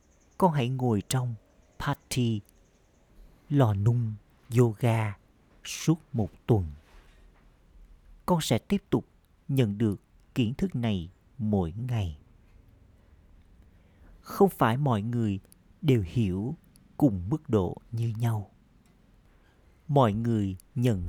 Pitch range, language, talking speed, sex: 95-130 Hz, Vietnamese, 100 wpm, male